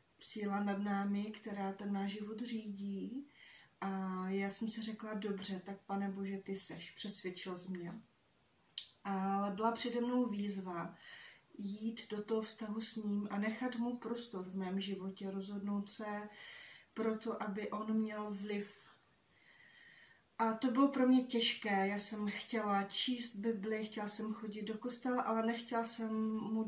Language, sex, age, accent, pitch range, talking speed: Czech, female, 30-49, native, 195-220 Hz, 150 wpm